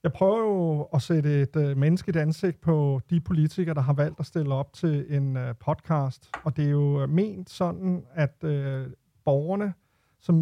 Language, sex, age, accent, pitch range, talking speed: Danish, male, 30-49, native, 145-180 Hz, 190 wpm